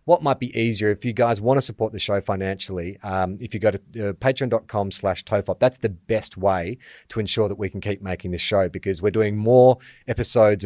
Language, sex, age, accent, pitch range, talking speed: English, male, 30-49, Australian, 95-125 Hz, 220 wpm